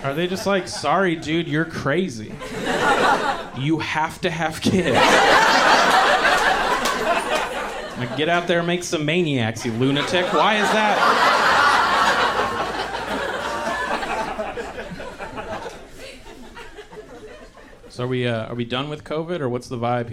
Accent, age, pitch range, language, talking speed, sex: American, 30-49, 120-165 Hz, English, 105 wpm, male